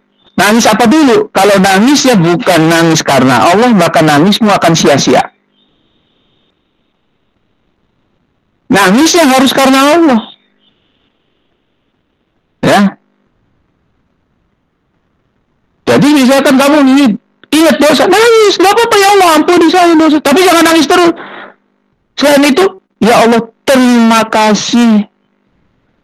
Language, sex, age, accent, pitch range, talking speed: Indonesian, male, 50-69, native, 170-275 Hz, 95 wpm